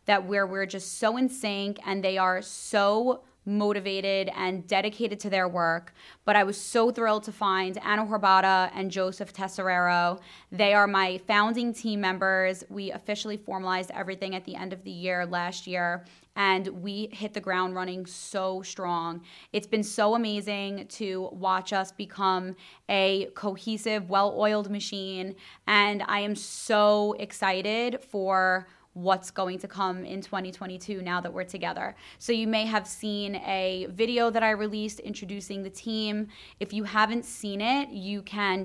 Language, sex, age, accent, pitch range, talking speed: English, female, 20-39, American, 185-210 Hz, 160 wpm